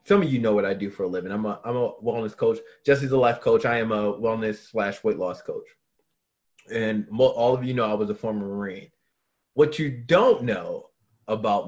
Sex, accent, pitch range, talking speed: male, American, 105-140 Hz, 225 wpm